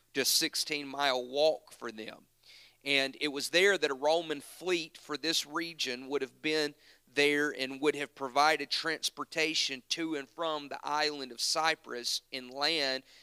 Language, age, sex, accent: English, 40-59, male, American